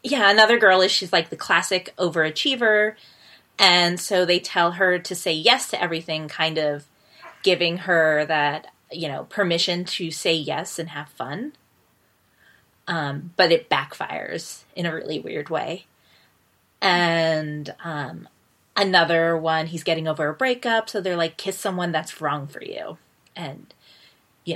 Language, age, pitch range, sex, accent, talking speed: English, 20-39, 160-195 Hz, female, American, 150 wpm